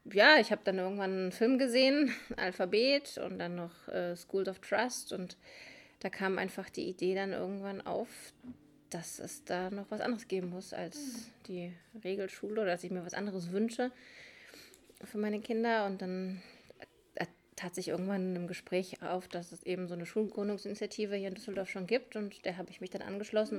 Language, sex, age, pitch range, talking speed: German, female, 20-39, 180-235 Hz, 185 wpm